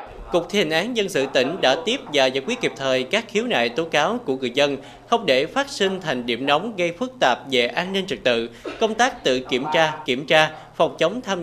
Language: Vietnamese